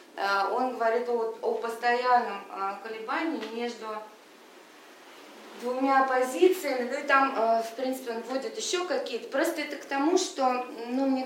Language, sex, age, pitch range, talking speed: Russian, female, 20-39, 220-290 Hz, 130 wpm